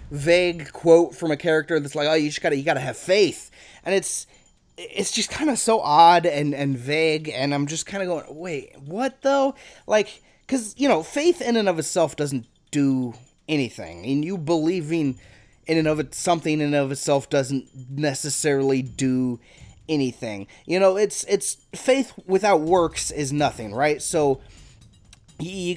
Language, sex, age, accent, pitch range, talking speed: English, male, 20-39, American, 140-180 Hz, 170 wpm